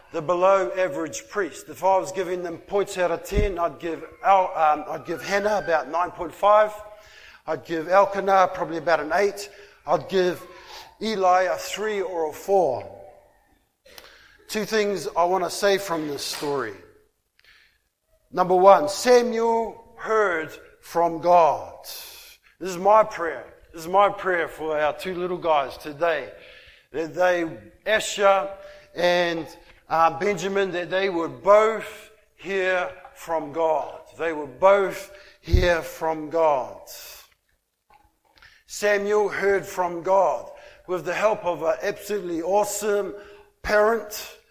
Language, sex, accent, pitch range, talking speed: English, male, Australian, 170-210 Hz, 135 wpm